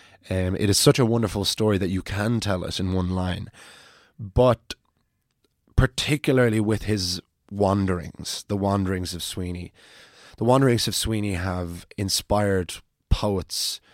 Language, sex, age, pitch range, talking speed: English, male, 20-39, 95-110 Hz, 135 wpm